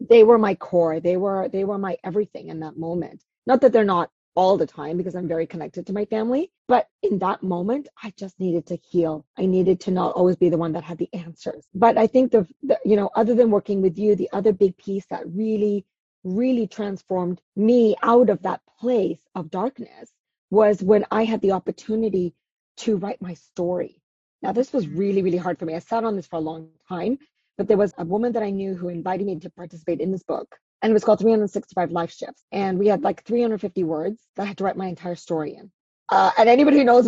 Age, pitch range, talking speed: 30-49, 175-225 Hz, 235 wpm